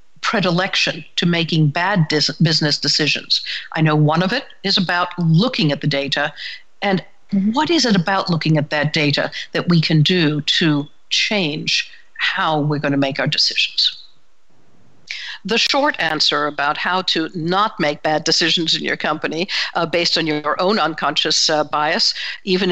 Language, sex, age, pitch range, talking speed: English, female, 60-79, 155-195 Hz, 160 wpm